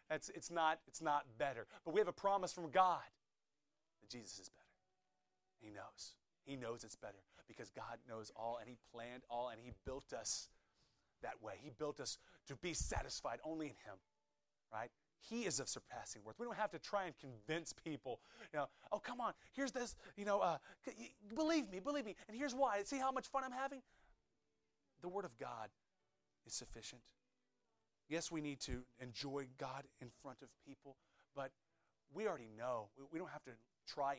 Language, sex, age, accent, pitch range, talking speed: English, male, 30-49, American, 110-175 Hz, 185 wpm